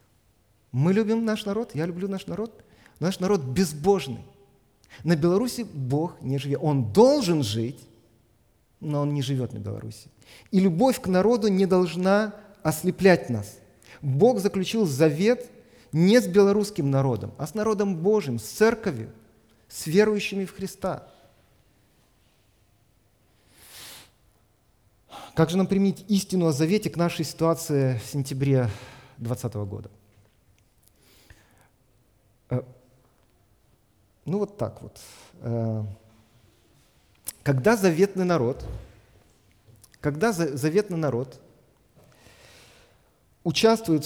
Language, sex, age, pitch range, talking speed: Russian, male, 40-59, 115-180 Hz, 100 wpm